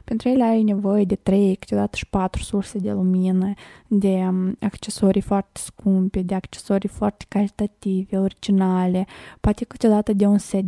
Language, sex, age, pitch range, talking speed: Romanian, female, 20-39, 195-225 Hz, 145 wpm